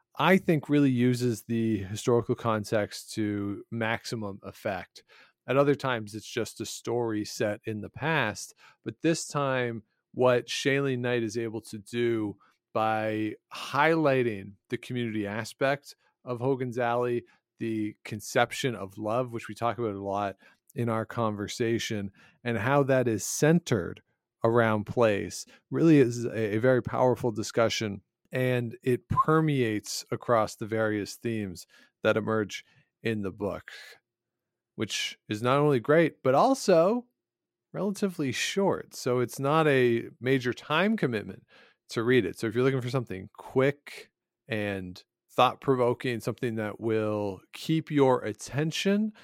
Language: English